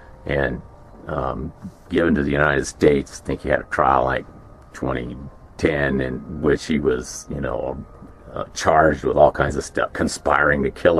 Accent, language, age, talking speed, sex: American, English, 50-69, 170 wpm, male